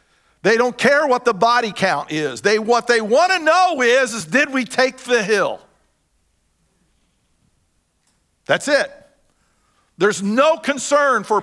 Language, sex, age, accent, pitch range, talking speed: English, male, 50-69, American, 180-245 Hz, 135 wpm